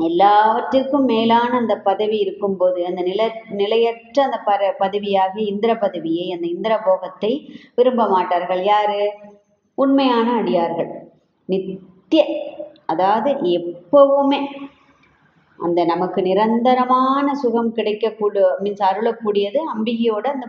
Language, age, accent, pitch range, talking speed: Tamil, 20-39, native, 190-235 Hz, 95 wpm